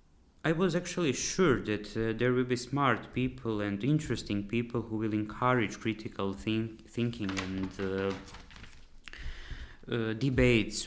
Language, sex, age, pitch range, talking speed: English, male, 20-39, 95-110 Hz, 125 wpm